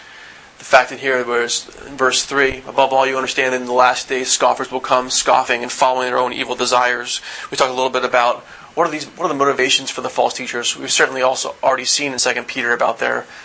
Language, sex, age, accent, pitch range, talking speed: English, male, 30-49, American, 120-130 Hz, 240 wpm